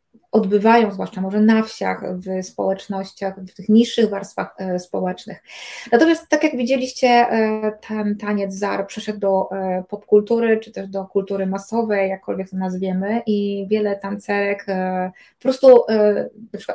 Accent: native